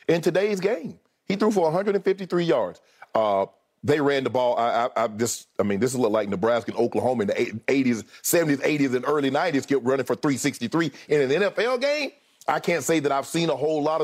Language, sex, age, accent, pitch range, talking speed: English, male, 40-59, American, 125-170 Hz, 220 wpm